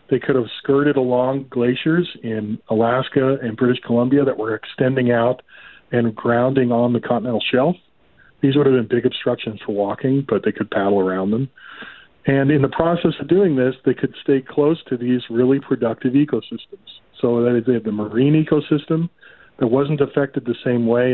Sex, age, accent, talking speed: male, 40-59, American, 180 wpm